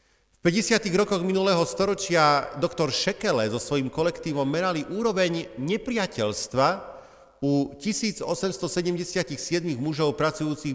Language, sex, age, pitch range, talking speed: Slovak, male, 40-59, 140-195 Hz, 95 wpm